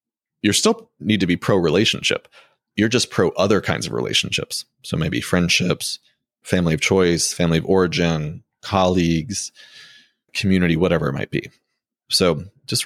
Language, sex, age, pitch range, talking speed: English, male, 30-49, 85-100 Hz, 145 wpm